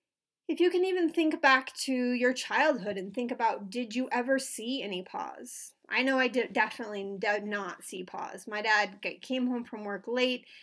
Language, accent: English, American